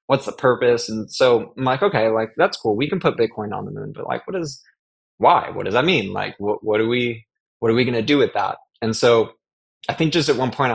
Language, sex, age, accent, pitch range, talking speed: English, male, 20-39, American, 105-130 Hz, 260 wpm